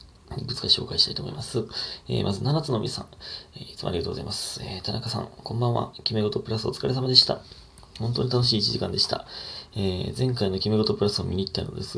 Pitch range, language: 100-135 Hz, Japanese